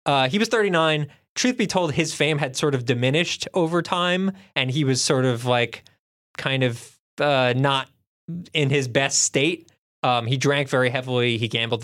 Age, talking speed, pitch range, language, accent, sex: 20-39, 185 wpm, 125-155 Hz, English, American, male